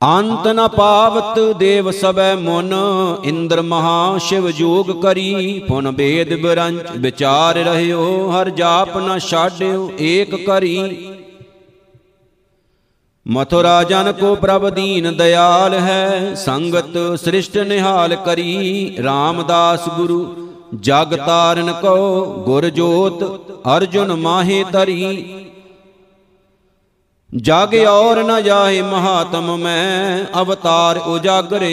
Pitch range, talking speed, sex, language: 170-190 Hz, 95 wpm, male, Punjabi